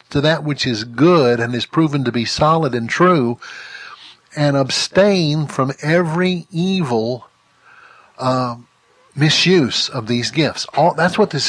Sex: male